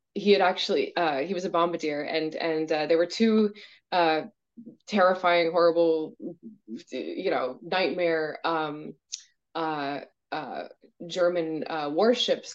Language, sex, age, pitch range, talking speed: English, female, 20-39, 170-230 Hz, 125 wpm